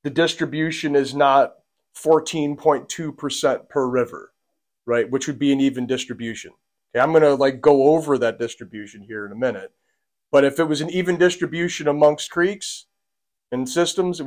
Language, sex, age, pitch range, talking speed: English, male, 30-49, 120-150 Hz, 160 wpm